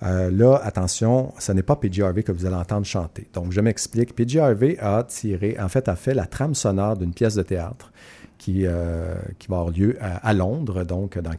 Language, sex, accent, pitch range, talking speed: French, male, Canadian, 95-120 Hz, 220 wpm